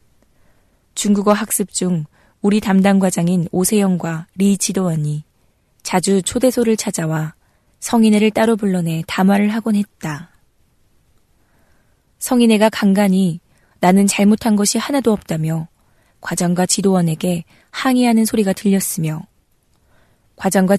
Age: 20-39